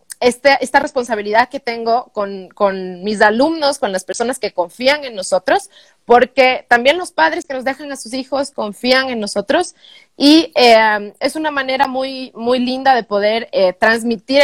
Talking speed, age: 170 wpm, 30-49